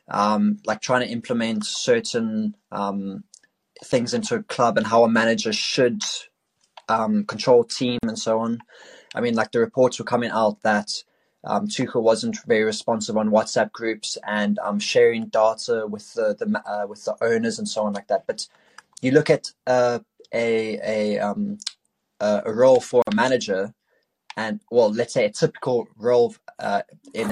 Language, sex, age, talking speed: English, male, 20-39, 170 wpm